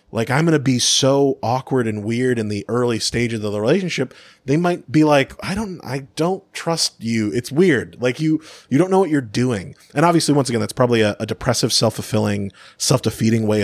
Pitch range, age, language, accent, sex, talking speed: 105-140 Hz, 30-49, English, American, male, 210 wpm